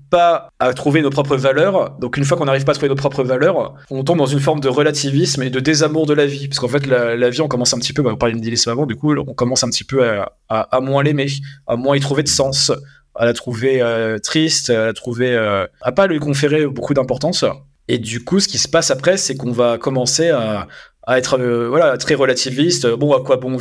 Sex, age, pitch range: male, 20-39, 125-150 Hz